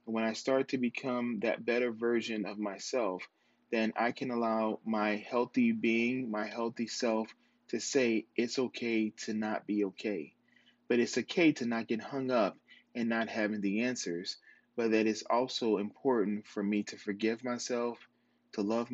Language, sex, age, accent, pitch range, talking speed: English, male, 20-39, American, 110-135 Hz, 170 wpm